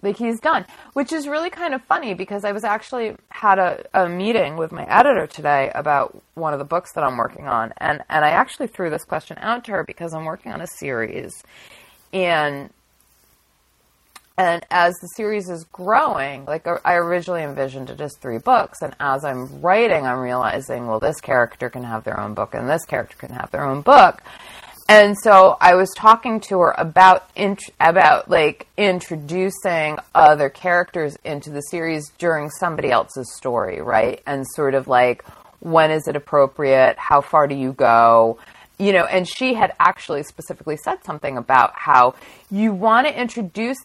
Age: 30-49